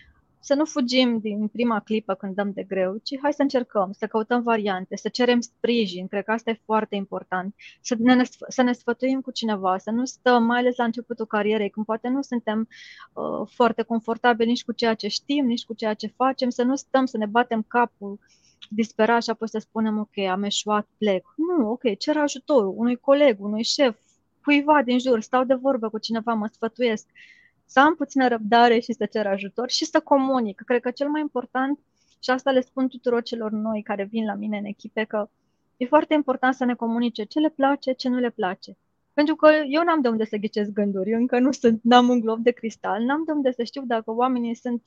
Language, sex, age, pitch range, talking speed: Romanian, female, 20-39, 220-260 Hz, 215 wpm